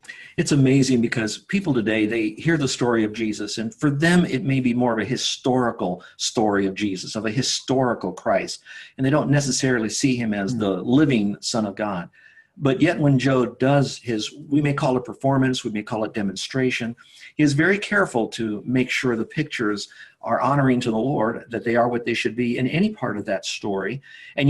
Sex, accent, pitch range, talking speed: male, American, 115-150 Hz, 205 wpm